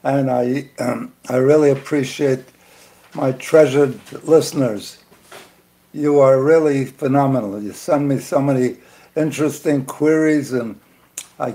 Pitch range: 130-150 Hz